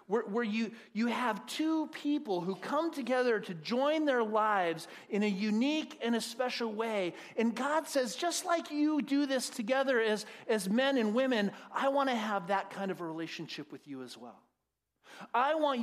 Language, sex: English, male